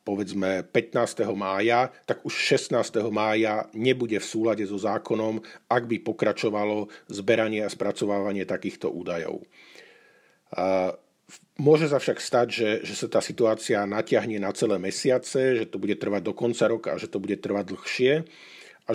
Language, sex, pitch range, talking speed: Slovak, male, 100-120 Hz, 150 wpm